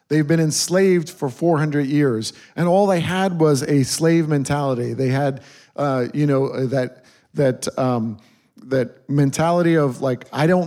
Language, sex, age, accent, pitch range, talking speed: English, male, 50-69, American, 135-175 Hz, 155 wpm